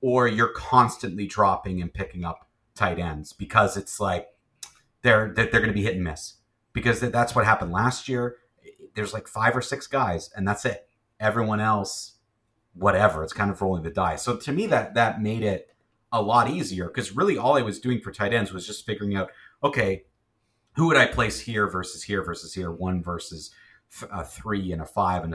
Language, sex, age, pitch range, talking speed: English, male, 30-49, 90-115 Hz, 205 wpm